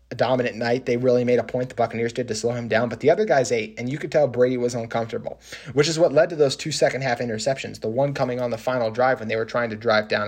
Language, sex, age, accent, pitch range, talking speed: English, male, 30-49, American, 120-140 Hz, 300 wpm